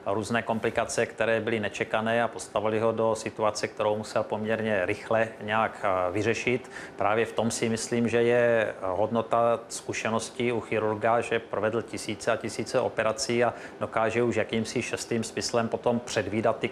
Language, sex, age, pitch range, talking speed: Czech, male, 30-49, 105-115 Hz, 150 wpm